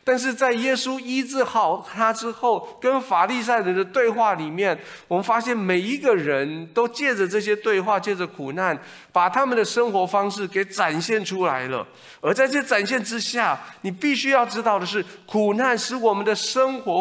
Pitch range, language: 145-220 Hz, Chinese